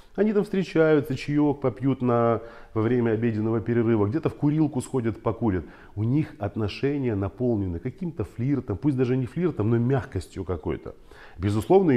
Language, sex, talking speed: Russian, male, 140 wpm